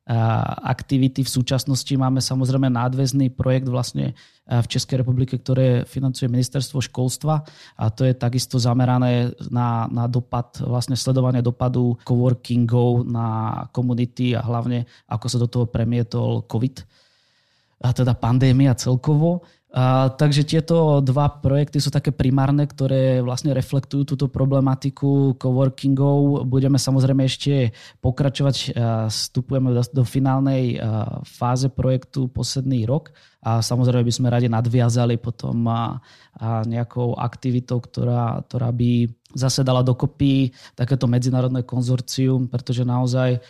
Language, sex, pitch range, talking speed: Czech, male, 125-135 Hz, 125 wpm